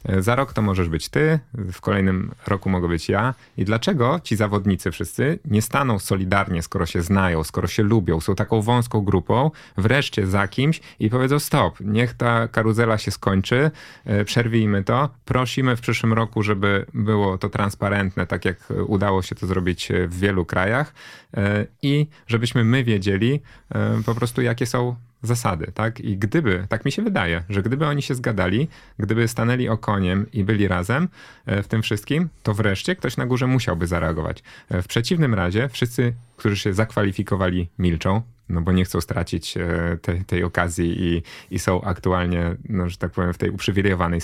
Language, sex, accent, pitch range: Polish, male, native, 90-115 Hz